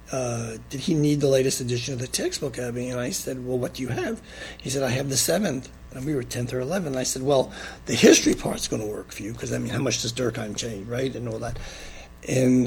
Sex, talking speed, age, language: male, 270 wpm, 60-79, English